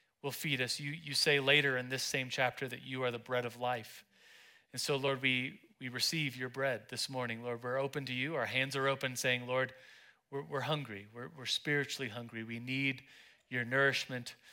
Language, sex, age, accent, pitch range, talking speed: English, male, 40-59, American, 115-135 Hz, 205 wpm